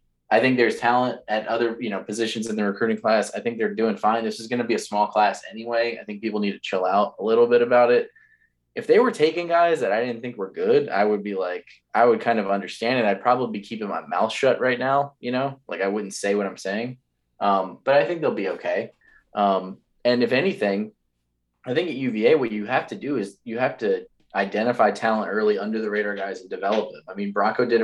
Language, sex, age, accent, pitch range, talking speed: English, male, 20-39, American, 100-125 Hz, 250 wpm